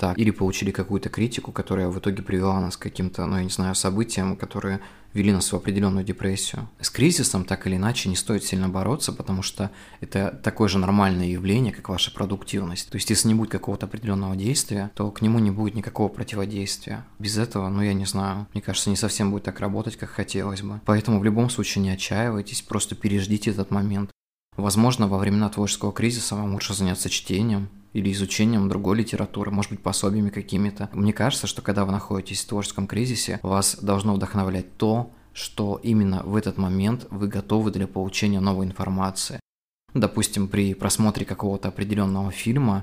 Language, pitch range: Russian, 95-105 Hz